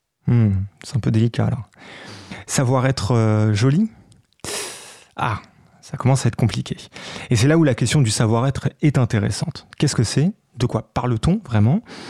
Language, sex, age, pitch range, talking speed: French, male, 30-49, 115-150 Hz, 170 wpm